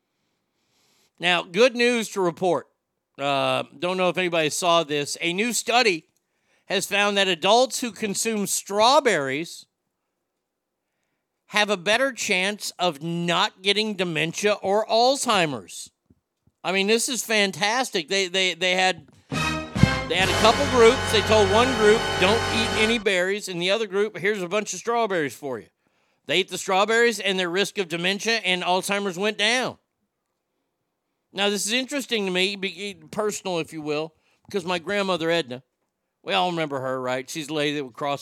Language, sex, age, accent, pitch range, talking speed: English, male, 50-69, American, 155-205 Hz, 160 wpm